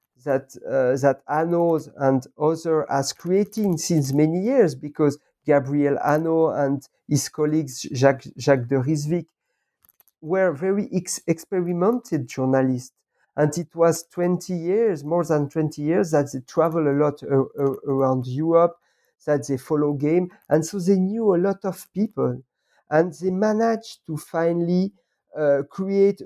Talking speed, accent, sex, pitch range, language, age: 140 wpm, French, male, 140-180 Hz, English, 50-69